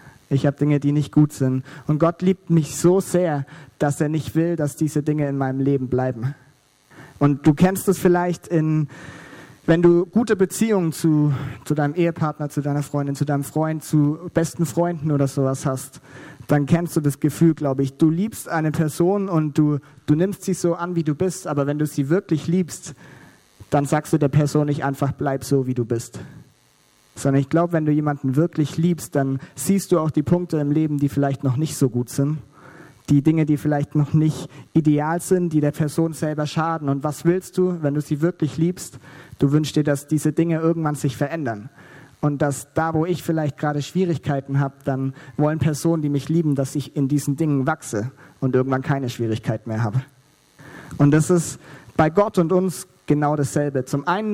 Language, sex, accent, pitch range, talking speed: German, male, German, 140-165 Hz, 200 wpm